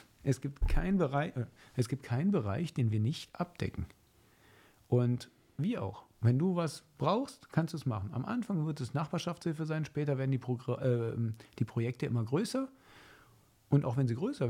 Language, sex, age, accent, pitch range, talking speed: German, male, 50-69, German, 110-150 Hz, 180 wpm